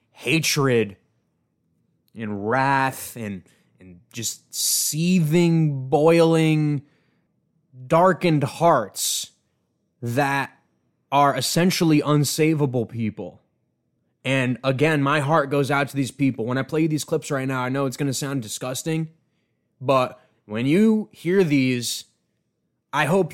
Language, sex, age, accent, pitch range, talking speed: English, male, 20-39, American, 130-165 Hz, 120 wpm